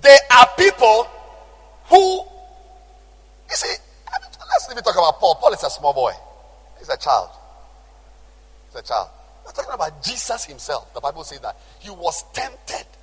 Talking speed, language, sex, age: 165 wpm, English, male, 50-69